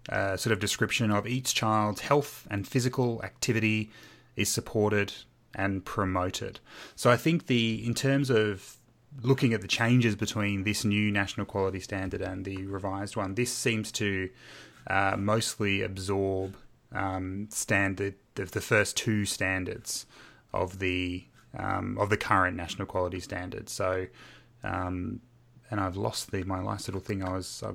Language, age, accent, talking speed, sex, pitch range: English, 20-39, Australian, 155 wpm, male, 95-115 Hz